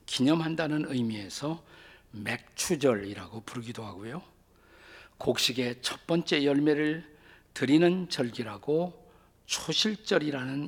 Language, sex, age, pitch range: Korean, male, 50-69, 115-160 Hz